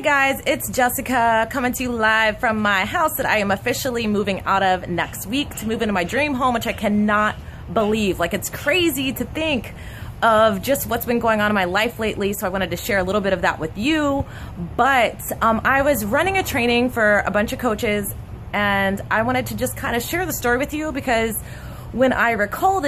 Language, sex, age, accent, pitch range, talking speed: English, female, 20-39, American, 190-255 Hz, 220 wpm